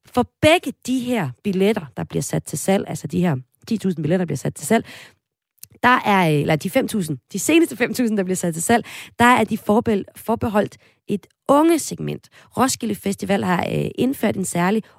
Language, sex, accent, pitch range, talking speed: Danish, female, native, 160-225 Hz, 185 wpm